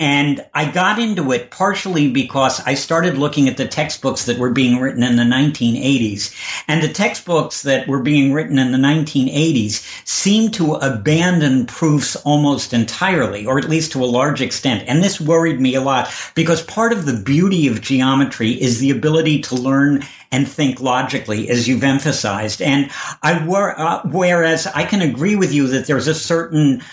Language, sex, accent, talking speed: English, male, American, 180 wpm